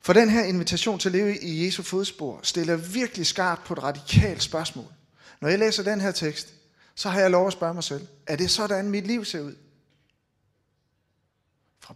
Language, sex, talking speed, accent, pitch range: Danish, male, 195 wpm, native, 145-195 Hz